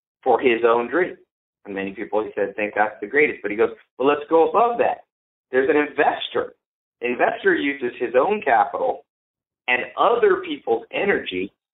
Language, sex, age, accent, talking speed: English, male, 50-69, American, 170 wpm